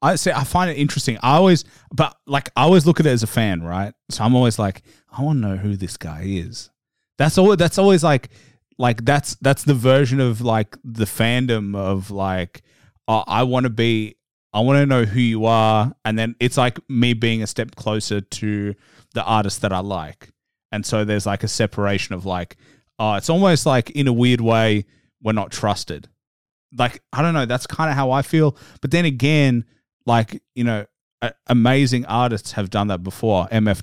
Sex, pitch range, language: male, 100-130 Hz, English